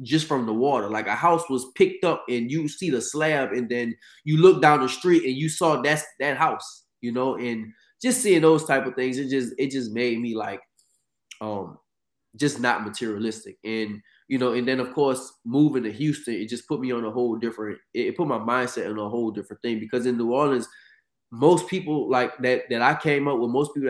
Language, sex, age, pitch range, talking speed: English, male, 20-39, 115-140 Hz, 225 wpm